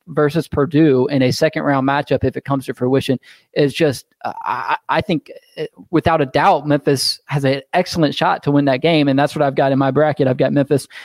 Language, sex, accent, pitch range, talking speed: English, male, American, 135-165 Hz, 230 wpm